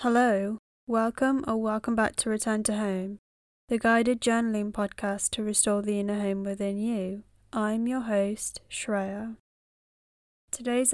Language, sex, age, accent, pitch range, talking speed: English, female, 10-29, British, 200-230 Hz, 135 wpm